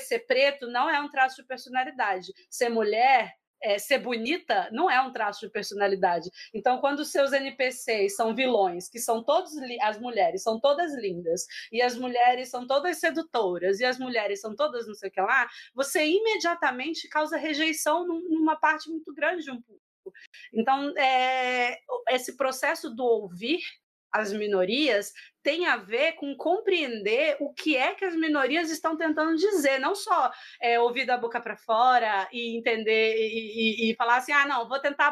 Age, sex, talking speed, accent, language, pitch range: 30-49, female, 175 wpm, Brazilian, Portuguese, 235-300 Hz